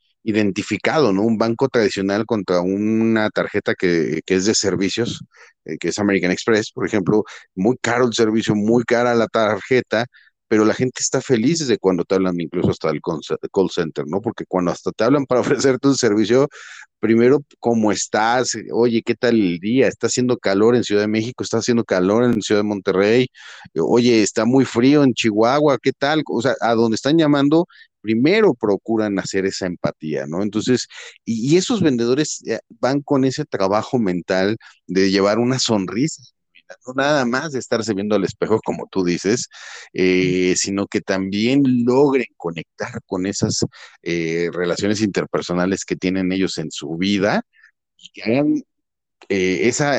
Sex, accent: male, Mexican